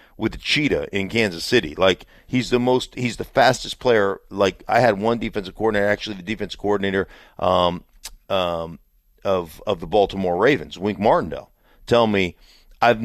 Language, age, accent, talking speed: English, 40-59, American, 165 wpm